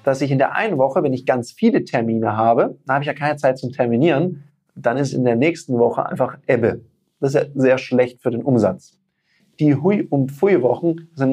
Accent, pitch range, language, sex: German, 125-170 Hz, German, male